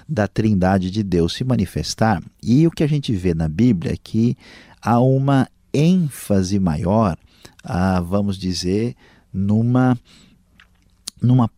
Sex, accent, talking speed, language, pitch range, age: male, Brazilian, 130 wpm, Portuguese, 95-125 Hz, 50-69